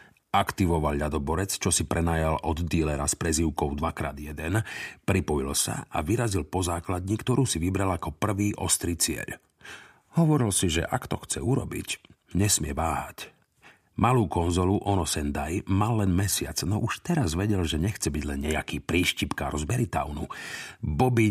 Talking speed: 145 wpm